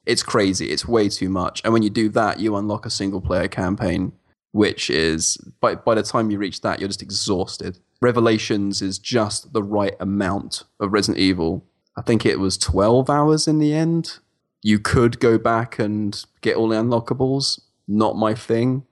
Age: 20-39